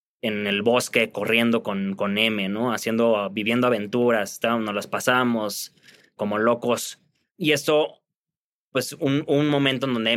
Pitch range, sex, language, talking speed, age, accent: 110-135 Hz, male, Spanish, 140 wpm, 20-39, Mexican